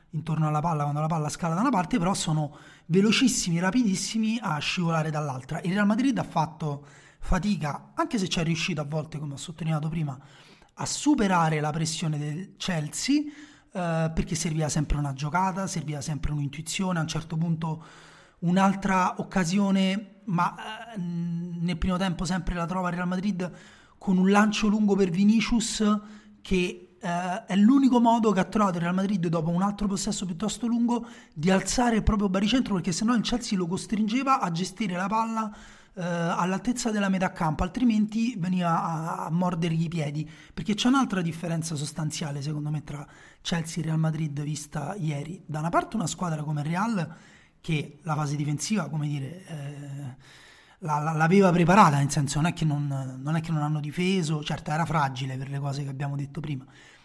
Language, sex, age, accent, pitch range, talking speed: Italian, male, 30-49, native, 155-200 Hz, 180 wpm